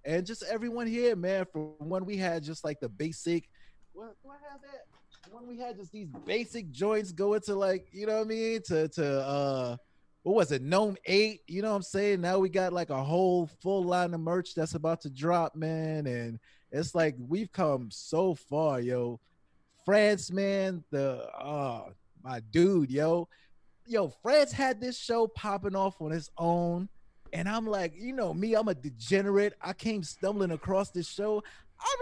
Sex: male